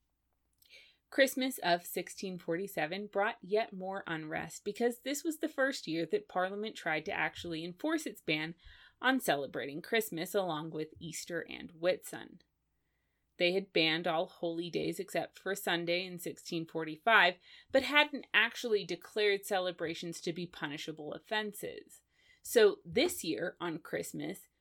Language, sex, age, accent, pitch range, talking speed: English, female, 30-49, American, 170-235 Hz, 130 wpm